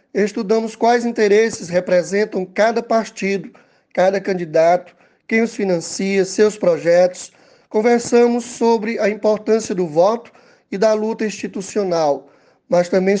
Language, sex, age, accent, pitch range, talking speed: Portuguese, male, 20-39, Brazilian, 185-225 Hz, 115 wpm